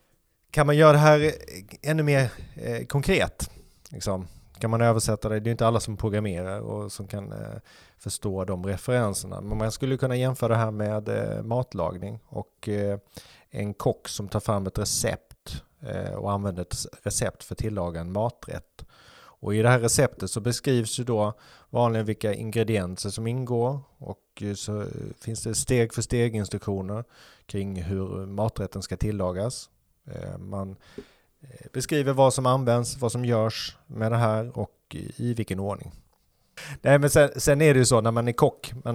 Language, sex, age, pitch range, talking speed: Swedish, male, 30-49, 100-125 Hz, 155 wpm